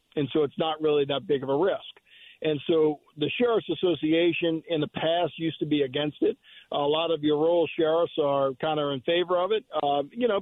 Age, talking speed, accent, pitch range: 50-69, 225 wpm, American, 150-175 Hz